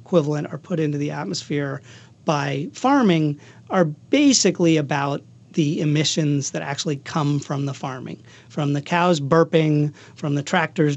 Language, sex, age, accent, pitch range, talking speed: English, male, 40-59, American, 145-170 Hz, 140 wpm